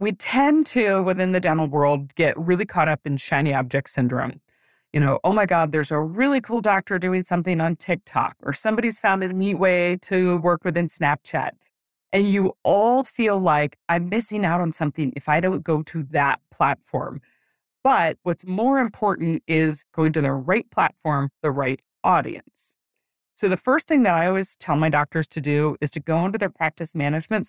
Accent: American